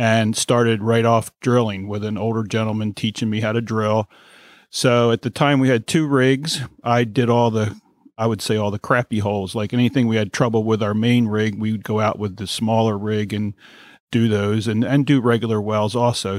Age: 40-59